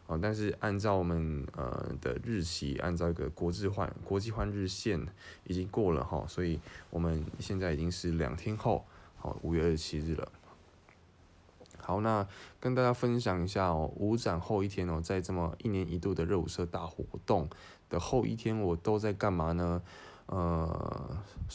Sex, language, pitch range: male, Chinese, 85-100 Hz